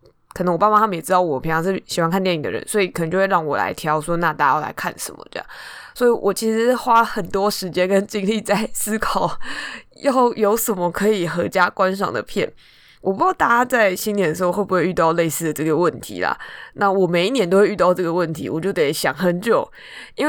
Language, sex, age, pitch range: Chinese, female, 20-39, 170-205 Hz